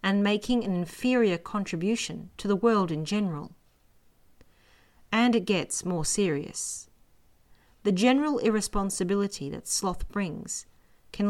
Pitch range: 170-225 Hz